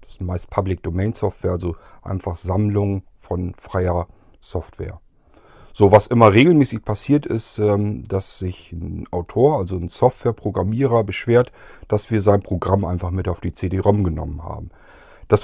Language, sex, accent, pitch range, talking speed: German, male, German, 95-120 Hz, 145 wpm